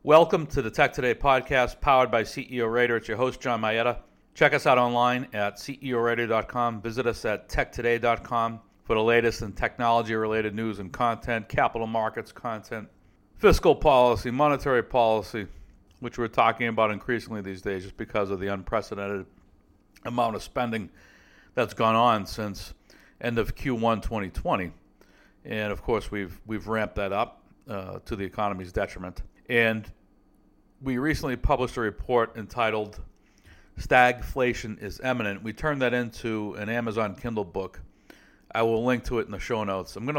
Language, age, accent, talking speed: English, 60-79, American, 155 wpm